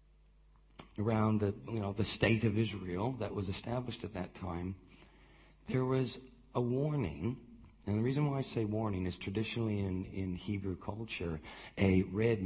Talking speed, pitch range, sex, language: 160 wpm, 95-115 Hz, male, English